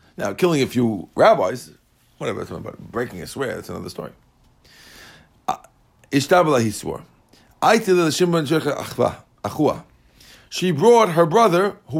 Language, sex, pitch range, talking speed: English, male, 120-170 Hz, 110 wpm